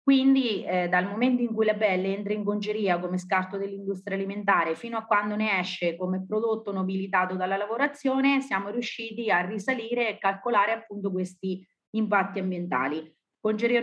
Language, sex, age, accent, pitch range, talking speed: Italian, female, 30-49, native, 185-230 Hz, 155 wpm